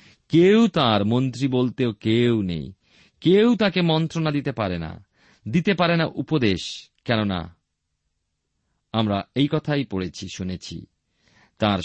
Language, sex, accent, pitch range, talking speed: Bengali, male, native, 100-155 Hz, 120 wpm